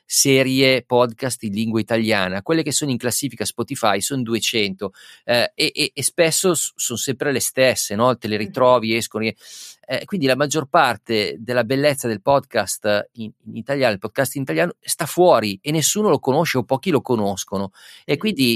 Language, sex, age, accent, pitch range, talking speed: Italian, male, 40-59, native, 110-140 Hz, 170 wpm